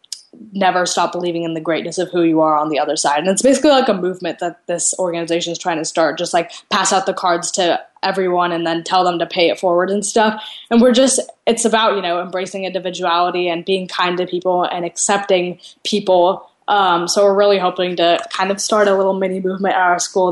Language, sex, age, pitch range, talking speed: English, female, 10-29, 175-195 Hz, 230 wpm